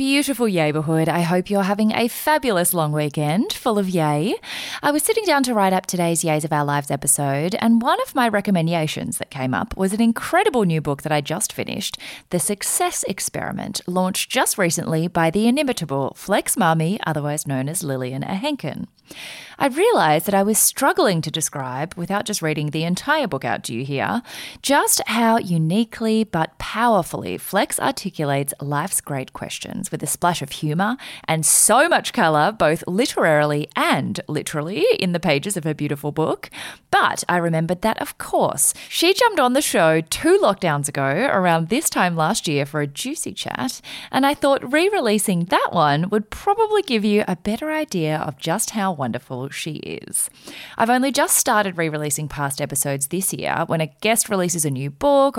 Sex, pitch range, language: female, 155-235 Hz, English